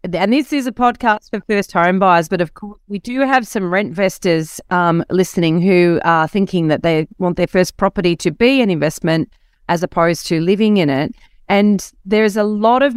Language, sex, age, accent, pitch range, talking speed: English, female, 30-49, Australian, 170-210 Hz, 205 wpm